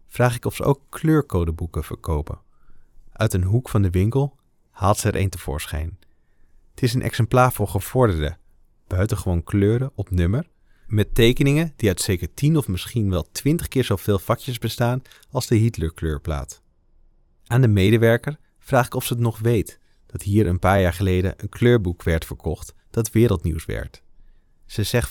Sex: male